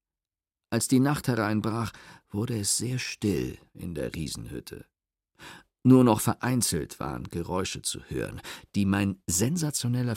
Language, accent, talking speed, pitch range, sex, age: German, German, 125 wpm, 95-115 Hz, male, 50-69